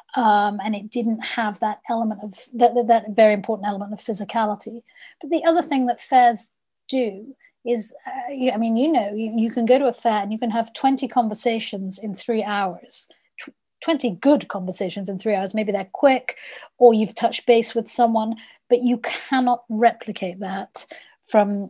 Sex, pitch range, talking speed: female, 205-240 Hz, 175 wpm